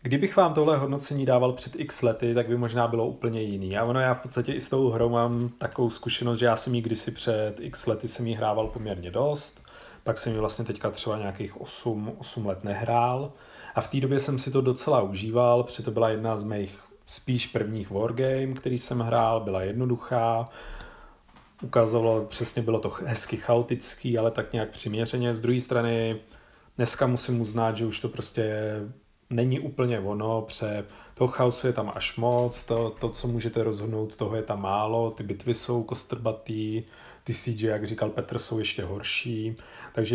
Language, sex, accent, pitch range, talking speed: Czech, male, native, 110-120 Hz, 190 wpm